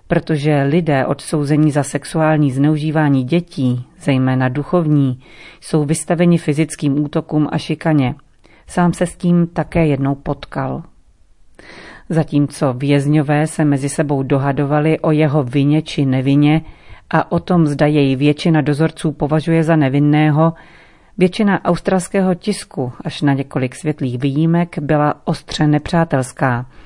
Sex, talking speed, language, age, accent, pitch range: female, 120 wpm, Czech, 40-59, native, 140-170 Hz